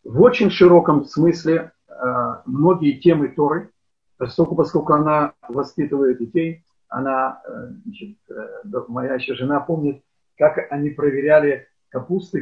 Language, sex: Russian, male